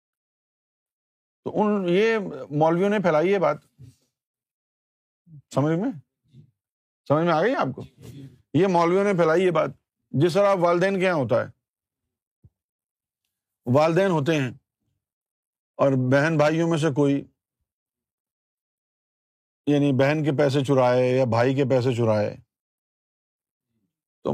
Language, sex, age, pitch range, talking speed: Urdu, male, 50-69, 120-180 Hz, 115 wpm